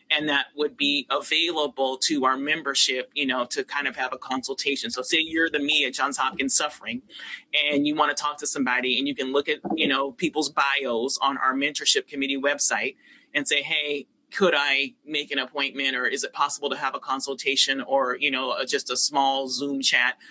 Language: English